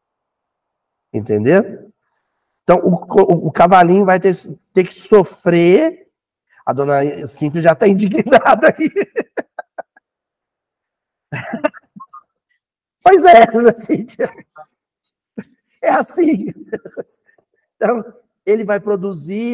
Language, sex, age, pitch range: Portuguese, male, 50-69, 170-235 Hz